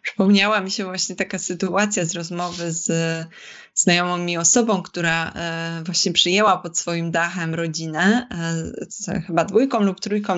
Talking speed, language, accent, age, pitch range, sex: 135 wpm, Polish, native, 20-39, 180-210 Hz, female